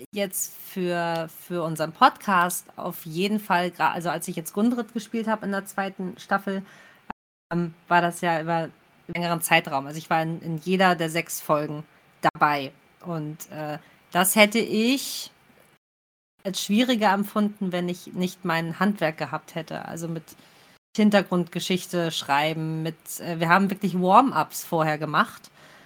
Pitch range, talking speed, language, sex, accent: 170-200 Hz, 155 wpm, German, female, German